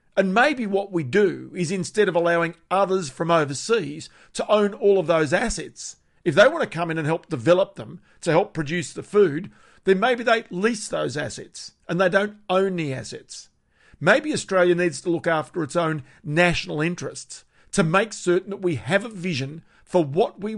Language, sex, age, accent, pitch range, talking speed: English, male, 50-69, Australian, 165-195 Hz, 190 wpm